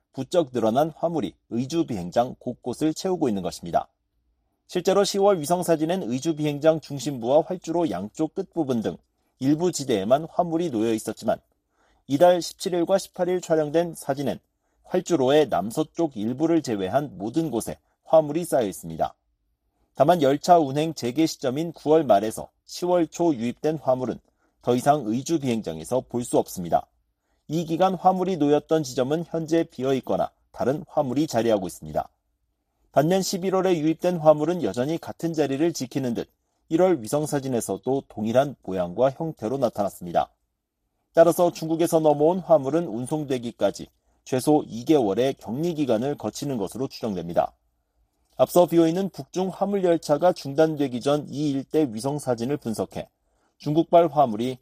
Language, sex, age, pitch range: Korean, male, 40-59, 125-170 Hz